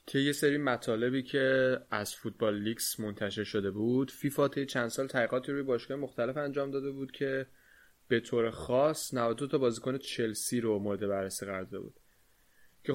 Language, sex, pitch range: Persian, male, 110-130 Hz